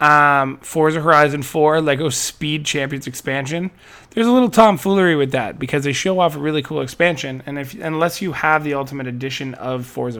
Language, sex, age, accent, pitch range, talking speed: English, male, 20-39, American, 125-150 Hz, 190 wpm